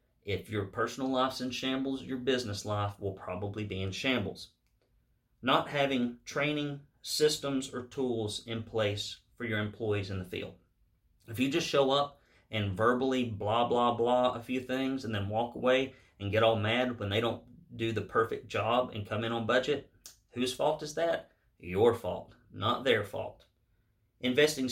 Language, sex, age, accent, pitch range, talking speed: English, male, 30-49, American, 105-130 Hz, 170 wpm